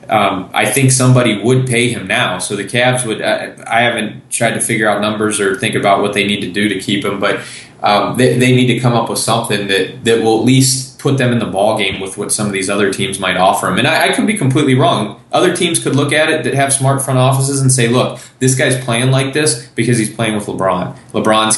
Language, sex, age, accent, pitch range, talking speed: English, male, 20-39, American, 105-130 Hz, 260 wpm